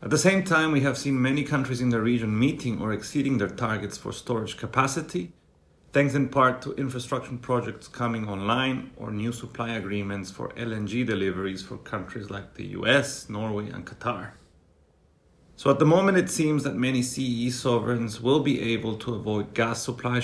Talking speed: 180 wpm